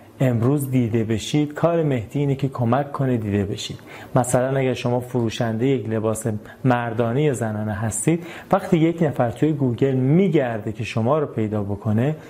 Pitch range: 115-150 Hz